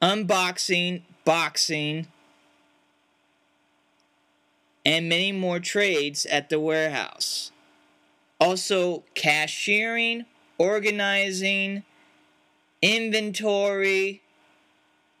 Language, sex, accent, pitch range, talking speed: English, male, American, 145-220 Hz, 50 wpm